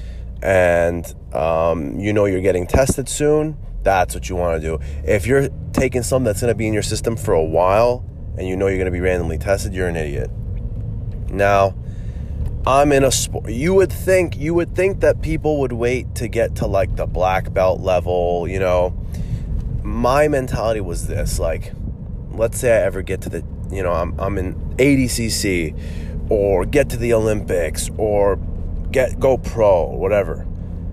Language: English